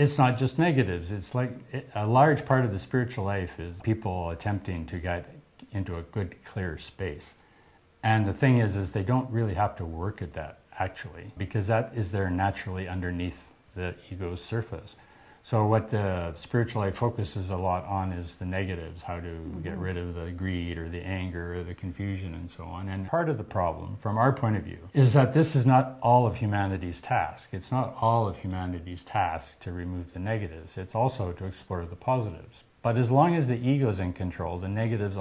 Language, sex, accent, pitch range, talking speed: English, male, American, 90-120 Hz, 205 wpm